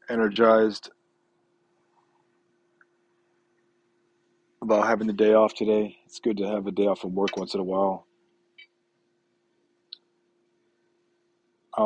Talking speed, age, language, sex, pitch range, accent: 105 wpm, 20-39, English, male, 100-115 Hz, American